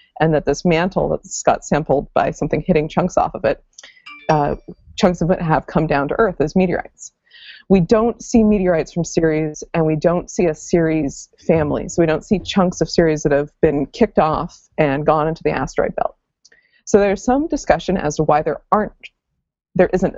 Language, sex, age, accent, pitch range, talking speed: English, female, 30-49, American, 155-205 Hz, 200 wpm